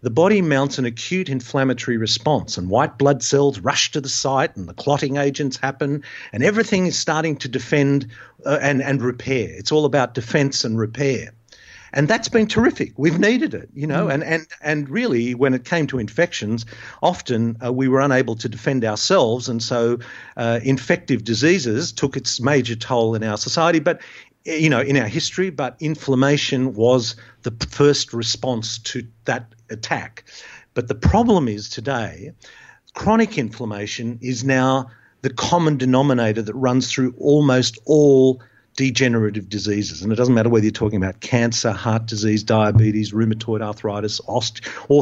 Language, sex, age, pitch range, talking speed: English, male, 50-69, 110-140 Hz, 165 wpm